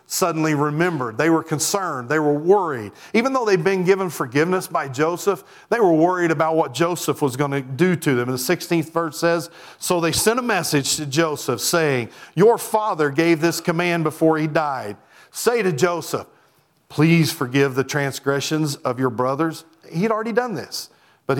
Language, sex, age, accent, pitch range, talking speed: English, male, 40-59, American, 145-175 Hz, 180 wpm